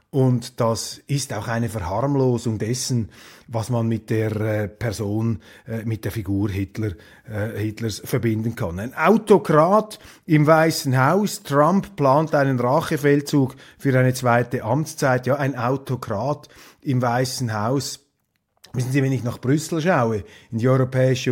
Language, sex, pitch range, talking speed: German, male, 125-160 Hz, 145 wpm